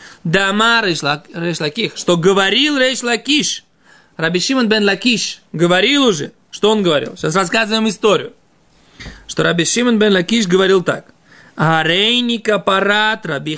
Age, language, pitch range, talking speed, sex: 20-39, Russian, 165-220 Hz, 115 wpm, male